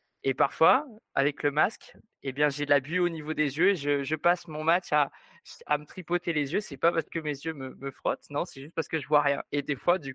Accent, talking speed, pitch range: French, 295 wpm, 145-170 Hz